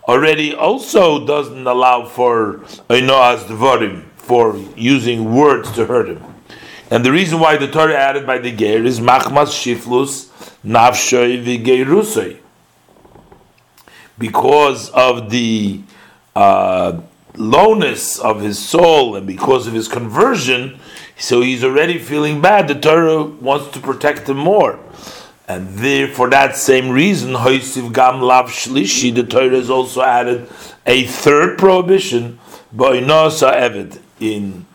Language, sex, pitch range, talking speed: English, male, 120-145 Hz, 110 wpm